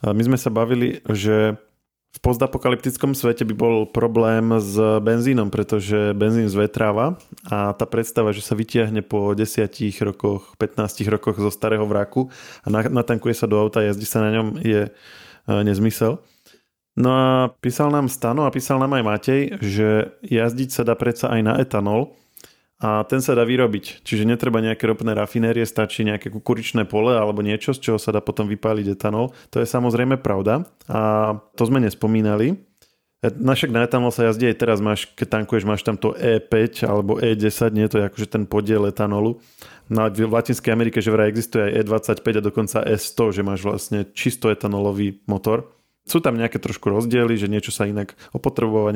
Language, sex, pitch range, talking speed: Slovak, male, 105-120 Hz, 170 wpm